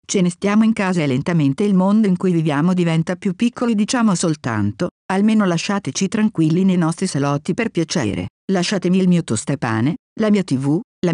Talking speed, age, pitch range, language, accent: 185 wpm, 50-69, 150-200 Hz, Italian, native